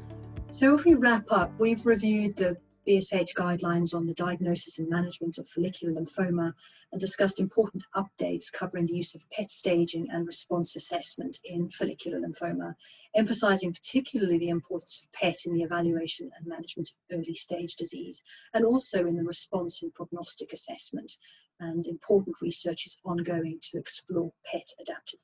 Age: 40-59